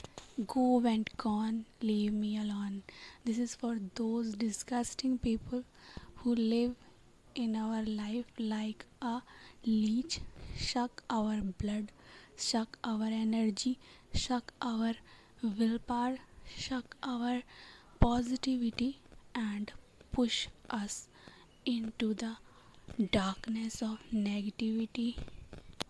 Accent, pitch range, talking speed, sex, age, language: Indian, 215-240 Hz, 95 wpm, female, 20-39, English